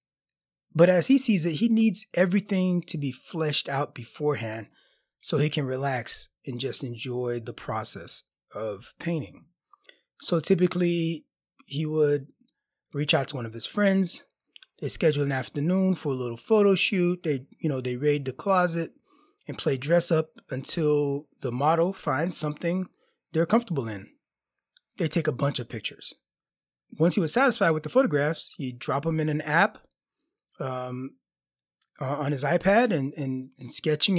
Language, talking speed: English, 160 wpm